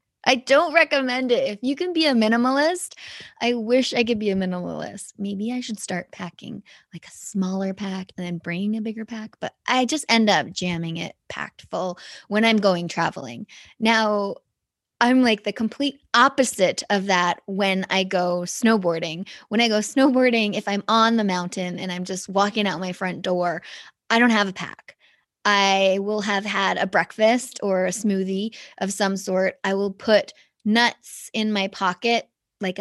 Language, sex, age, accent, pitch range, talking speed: English, female, 20-39, American, 185-225 Hz, 180 wpm